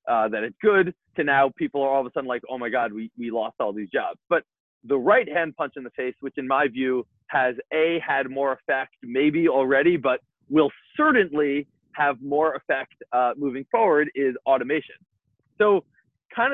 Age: 30-49